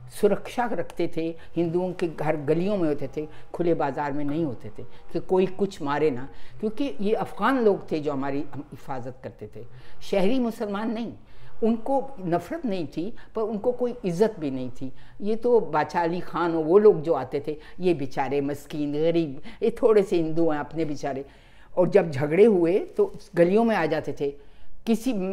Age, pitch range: 50-69, 145-210 Hz